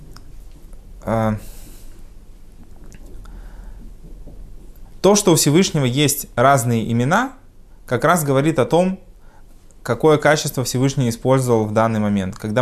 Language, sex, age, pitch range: Russian, male, 20-39, 110-130 Hz